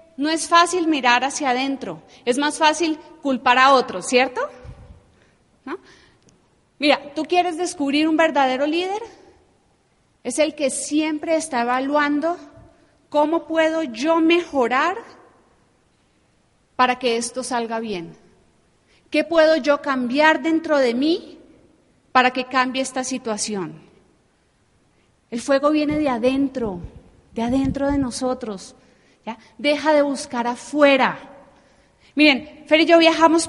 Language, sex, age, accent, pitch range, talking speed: Spanish, female, 30-49, Colombian, 255-315 Hz, 115 wpm